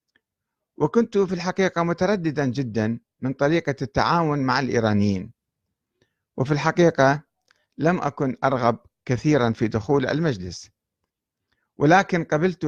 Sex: male